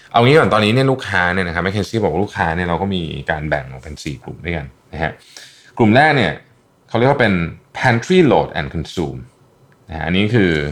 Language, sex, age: Thai, male, 20-39